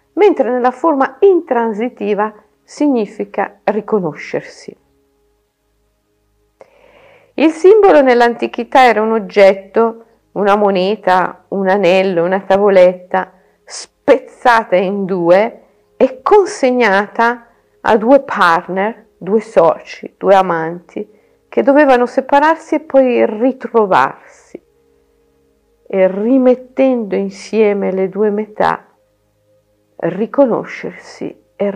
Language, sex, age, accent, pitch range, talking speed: Italian, female, 50-69, native, 190-265 Hz, 85 wpm